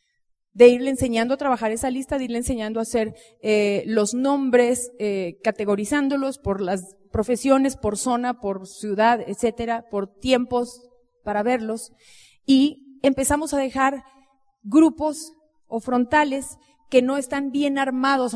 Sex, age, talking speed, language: female, 30-49, 135 wpm, Spanish